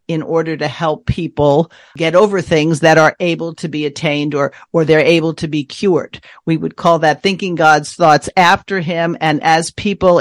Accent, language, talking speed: American, English, 195 wpm